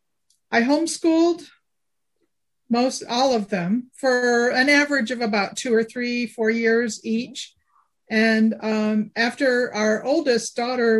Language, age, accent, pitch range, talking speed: English, 50-69, American, 205-235 Hz, 125 wpm